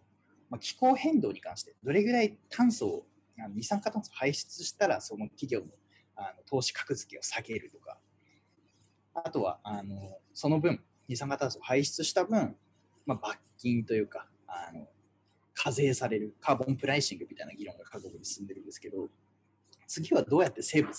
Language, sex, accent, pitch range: Japanese, male, native, 105-160 Hz